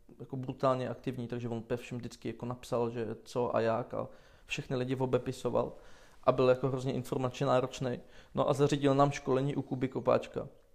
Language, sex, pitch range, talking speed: Czech, male, 120-130 Hz, 180 wpm